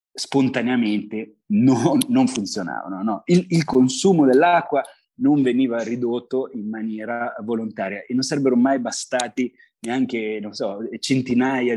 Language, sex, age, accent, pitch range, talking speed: Italian, male, 20-39, native, 115-150 Hz, 120 wpm